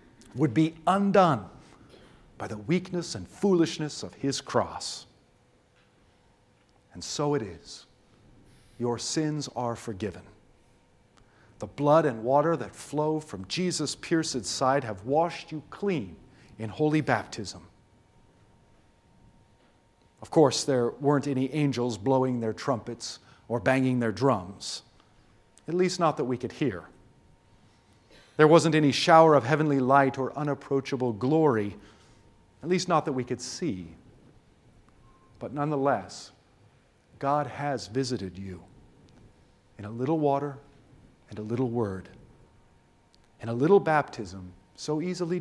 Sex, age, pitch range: male, 50-69, 105-150 Hz